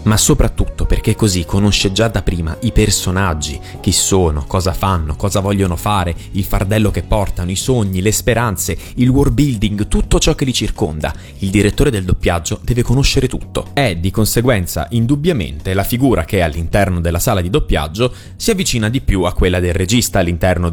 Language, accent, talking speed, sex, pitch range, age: Italian, native, 180 wpm, male, 90-120 Hz, 20-39